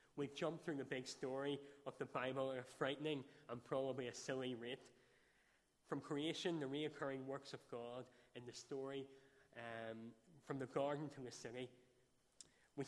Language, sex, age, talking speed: English, male, 20-39, 165 wpm